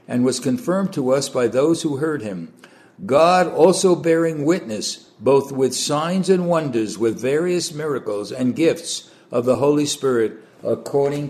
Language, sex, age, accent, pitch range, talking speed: English, male, 60-79, American, 120-155 Hz, 155 wpm